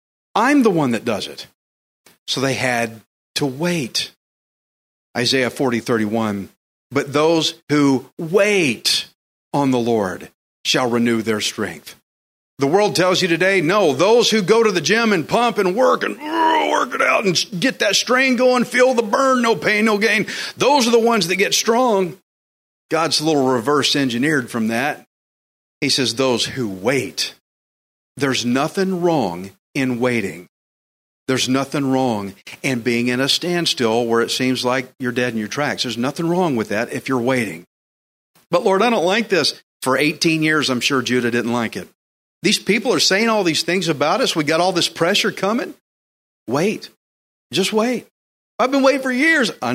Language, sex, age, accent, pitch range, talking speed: English, male, 40-59, American, 120-190 Hz, 175 wpm